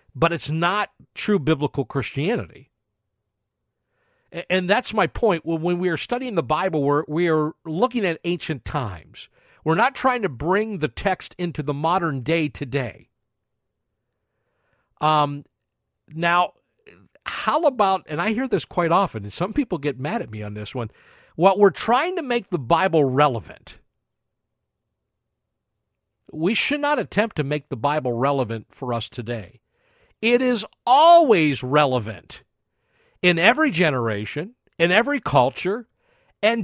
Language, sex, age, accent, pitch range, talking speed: English, male, 50-69, American, 145-230 Hz, 140 wpm